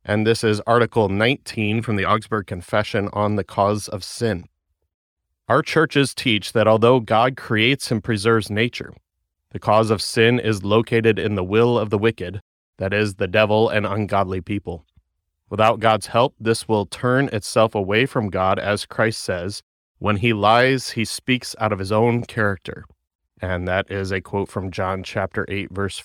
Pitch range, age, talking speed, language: 100-115 Hz, 30-49, 175 wpm, English